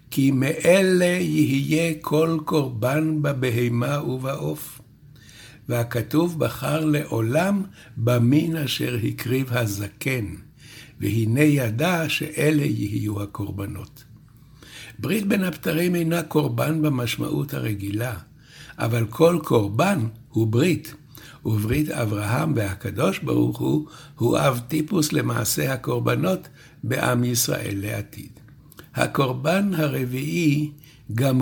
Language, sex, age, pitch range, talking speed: Hebrew, male, 60-79, 115-150 Hz, 90 wpm